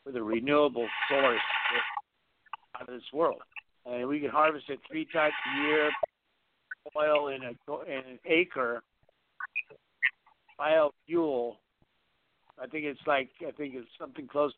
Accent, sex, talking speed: American, male, 130 wpm